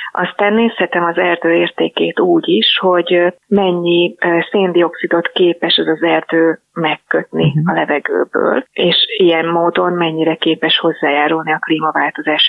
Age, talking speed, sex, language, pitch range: 30-49, 120 wpm, female, Hungarian, 160-195 Hz